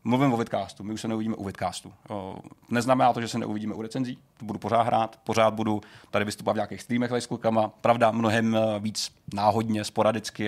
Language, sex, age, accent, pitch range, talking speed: Czech, male, 30-49, native, 105-120 Hz, 190 wpm